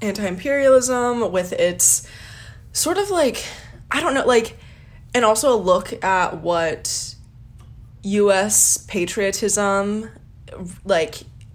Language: English